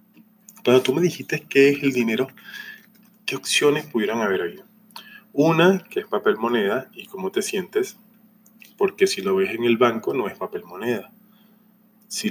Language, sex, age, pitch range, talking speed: Spanish, male, 20-39, 145-220 Hz, 165 wpm